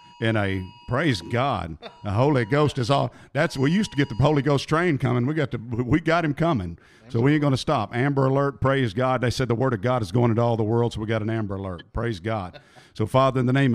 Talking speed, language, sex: 265 wpm, English, male